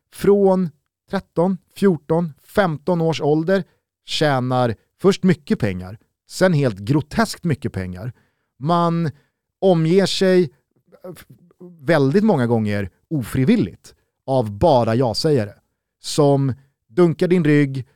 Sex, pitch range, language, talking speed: male, 125-170 Hz, Swedish, 105 wpm